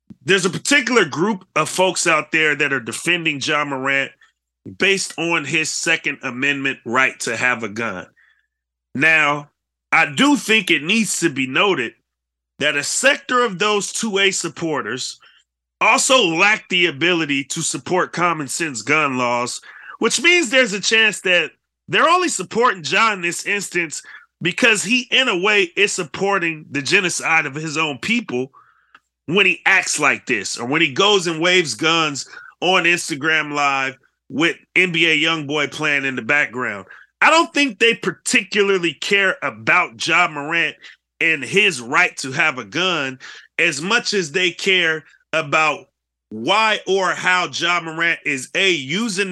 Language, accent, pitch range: English, American, 145-195 Hz